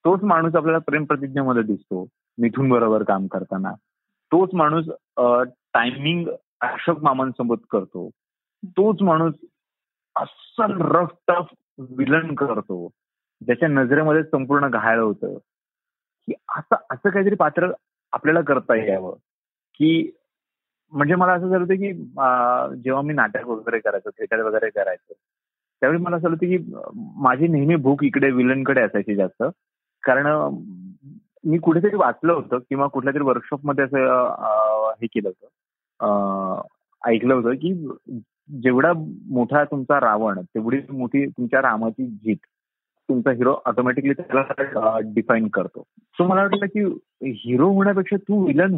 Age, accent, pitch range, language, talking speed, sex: 30-49, native, 125-180 Hz, Marathi, 130 wpm, male